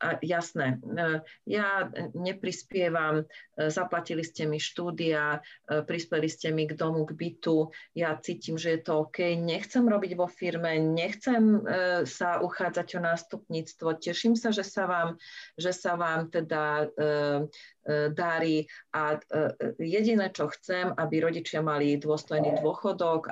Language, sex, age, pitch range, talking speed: Slovak, female, 40-59, 155-180 Hz, 130 wpm